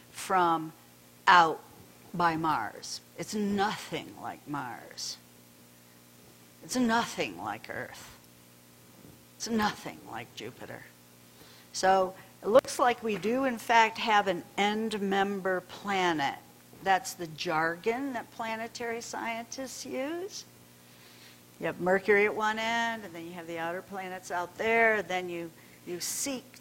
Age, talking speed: 60-79, 125 wpm